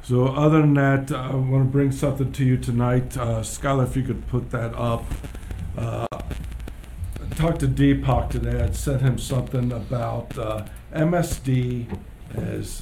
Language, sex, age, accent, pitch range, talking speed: English, male, 50-69, American, 110-130 Hz, 160 wpm